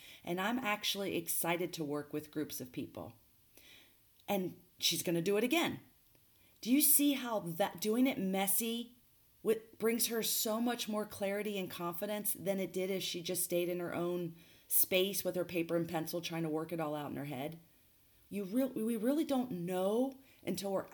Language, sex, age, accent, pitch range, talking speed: English, female, 40-59, American, 160-210 Hz, 190 wpm